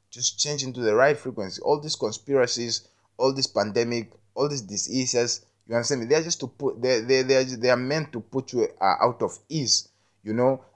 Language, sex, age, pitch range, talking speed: English, male, 20-39, 105-140 Hz, 220 wpm